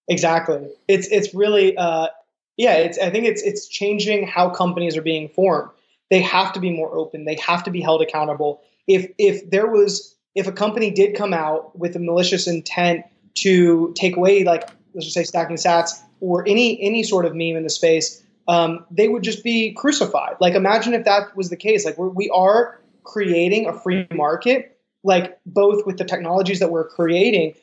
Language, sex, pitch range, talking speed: English, male, 170-200 Hz, 195 wpm